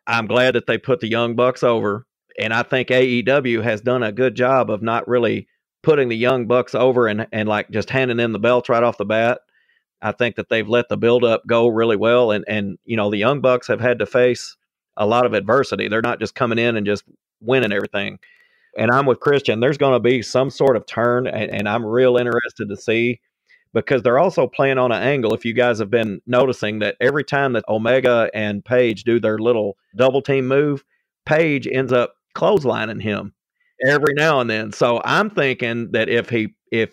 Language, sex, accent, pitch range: English, male, American, 115-130 Hz